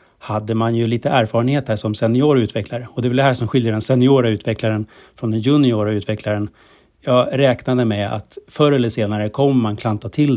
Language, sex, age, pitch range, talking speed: Swedish, male, 30-49, 110-130 Hz, 195 wpm